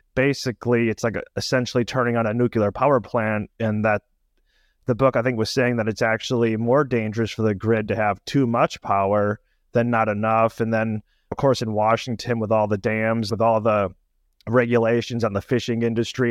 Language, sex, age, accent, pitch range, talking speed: English, male, 30-49, American, 105-125 Hz, 190 wpm